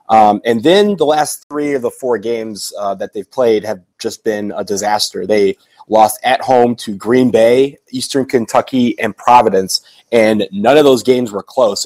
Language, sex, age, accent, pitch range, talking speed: English, male, 30-49, American, 105-125 Hz, 185 wpm